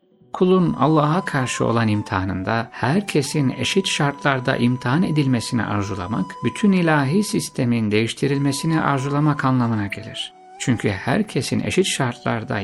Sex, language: male, Turkish